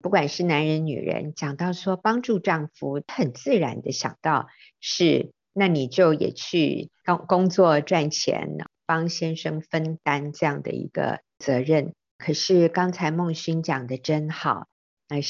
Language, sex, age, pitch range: Chinese, female, 50-69, 150-185 Hz